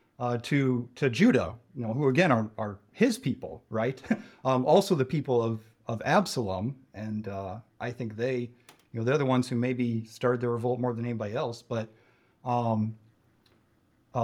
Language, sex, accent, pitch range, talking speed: English, male, American, 115-130 Hz, 175 wpm